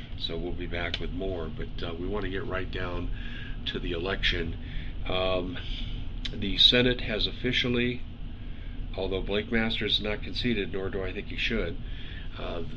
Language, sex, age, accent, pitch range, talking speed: English, male, 40-59, American, 90-115 Hz, 165 wpm